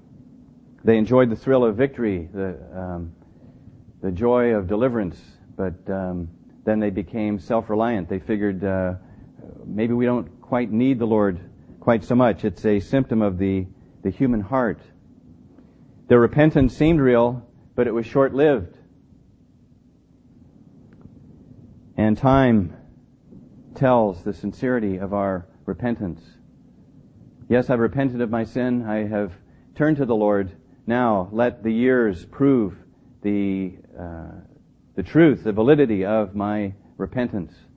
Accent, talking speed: American, 130 wpm